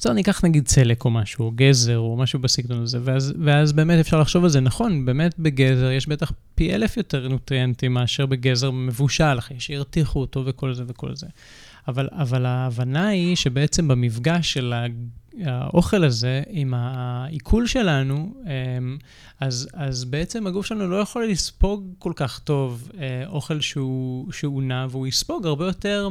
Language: Hebrew